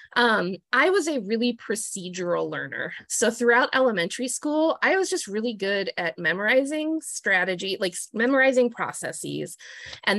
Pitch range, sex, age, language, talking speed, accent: 195-275 Hz, female, 20-39, English, 135 wpm, American